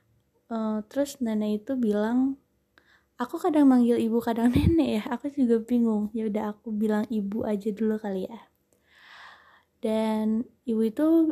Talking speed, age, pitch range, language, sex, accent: 145 wpm, 20-39, 220-255 Hz, Indonesian, female, native